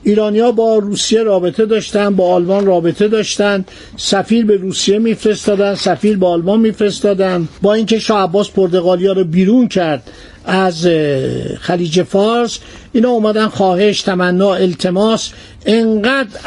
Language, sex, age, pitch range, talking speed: Persian, male, 50-69, 185-220 Hz, 120 wpm